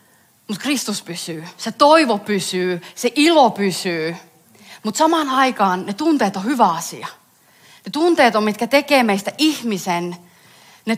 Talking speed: 135 wpm